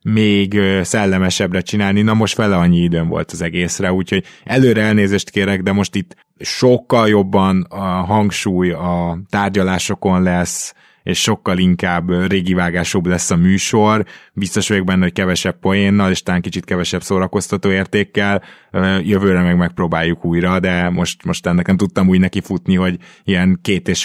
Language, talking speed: Hungarian, 150 wpm